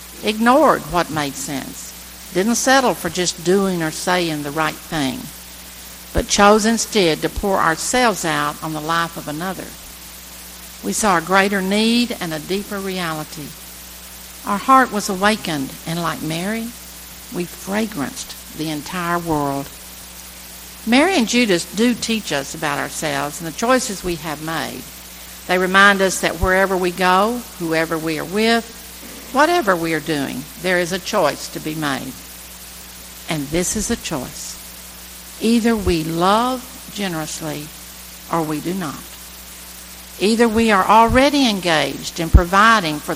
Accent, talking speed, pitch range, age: American, 145 wpm, 130-205 Hz, 60-79